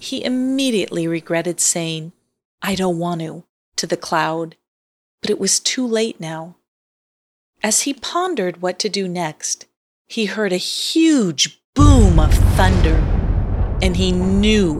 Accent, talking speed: American, 140 wpm